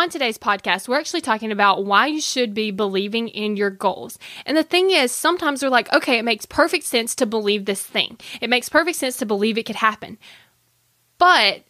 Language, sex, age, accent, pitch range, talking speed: English, female, 10-29, American, 205-280 Hz, 210 wpm